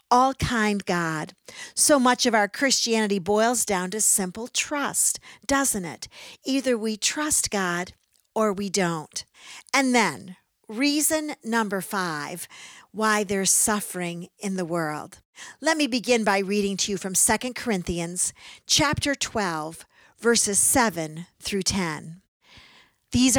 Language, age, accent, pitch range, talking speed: English, 50-69, American, 185-250 Hz, 130 wpm